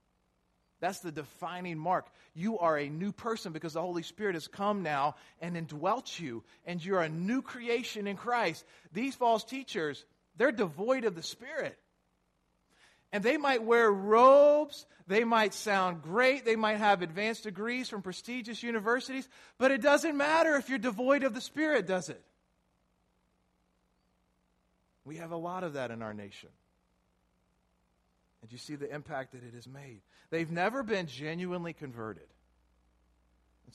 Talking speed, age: 155 wpm, 40-59